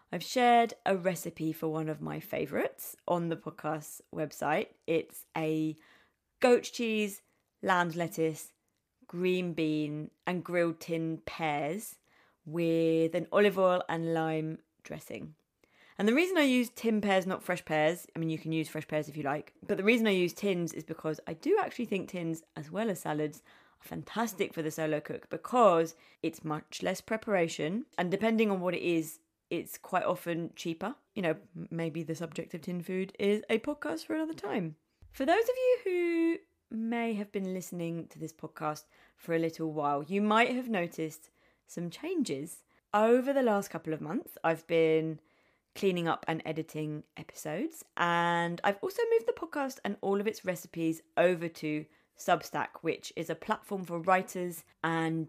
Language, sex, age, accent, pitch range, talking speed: English, female, 20-39, British, 160-205 Hz, 175 wpm